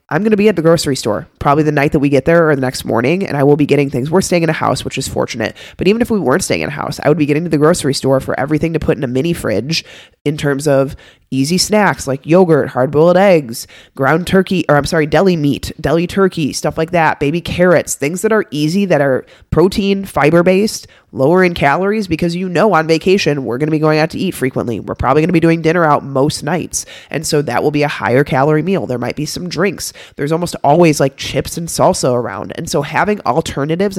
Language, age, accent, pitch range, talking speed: English, 20-39, American, 140-175 Hz, 250 wpm